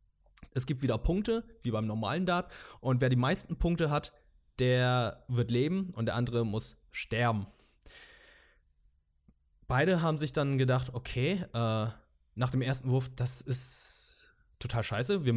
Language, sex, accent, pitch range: German, male, German, 115-145 Hz